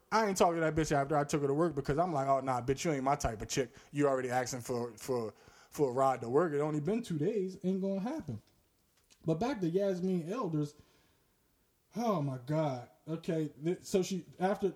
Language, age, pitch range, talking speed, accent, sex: English, 20-39, 145-210 Hz, 225 wpm, American, male